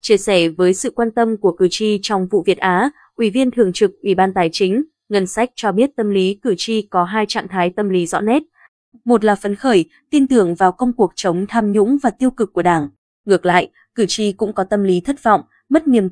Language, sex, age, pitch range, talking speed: Vietnamese, female, 20-39, 190-240 Hz, 245 wpm